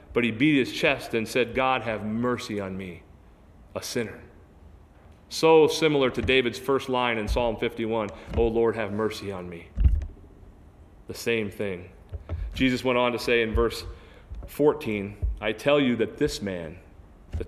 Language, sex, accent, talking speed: English, male, American, 160 wpm